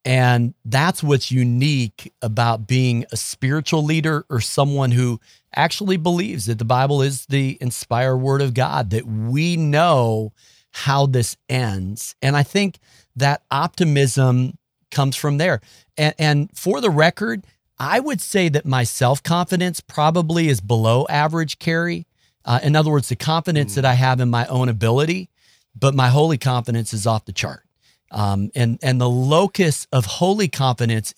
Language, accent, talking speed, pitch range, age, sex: English, American, 155 wpm, 115-155 Hz, 40-59, male